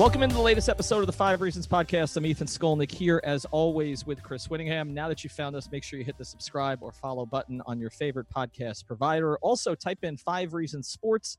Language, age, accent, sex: English, 40-59, American, male